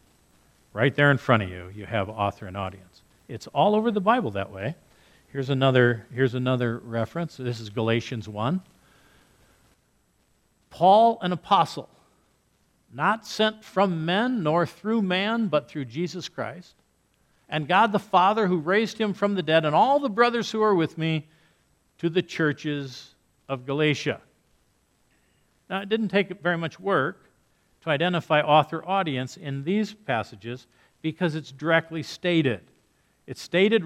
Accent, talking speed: American, 145 wpm